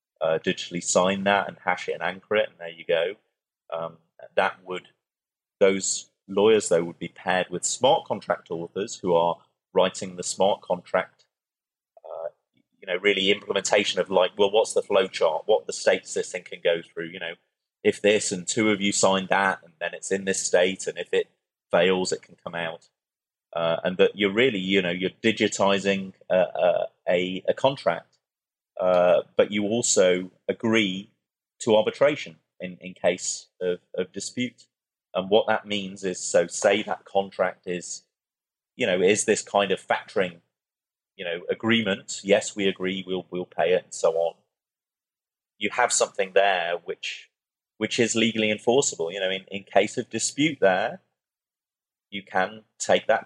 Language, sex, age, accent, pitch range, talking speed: English, male, 30-49, British, 90-115 Hz, 175 wpm